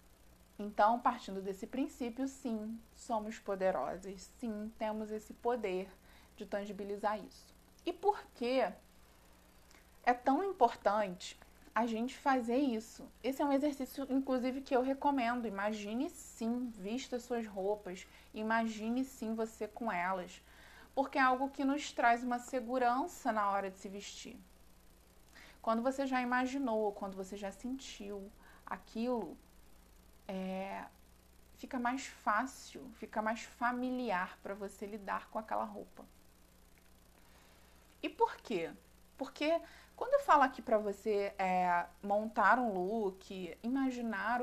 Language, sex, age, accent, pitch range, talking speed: Portuguese, female, 20-39, Brazilian, 195-250 Hz, 125 wpm